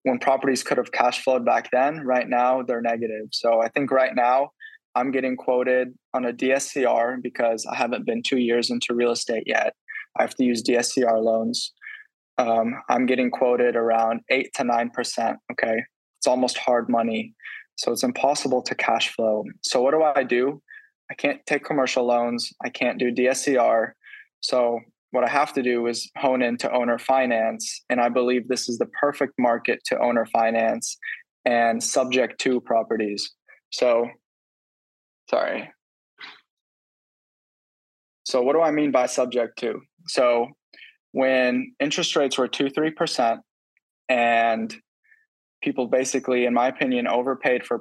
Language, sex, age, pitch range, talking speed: English, male, 20-39, 115-130 Hz, 155 wpm